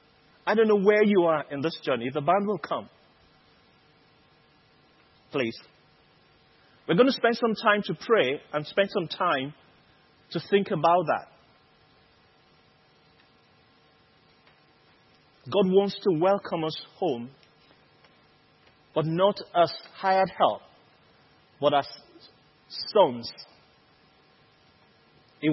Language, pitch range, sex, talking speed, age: English, 150-200 Hz, male, 105 wpm, 30-49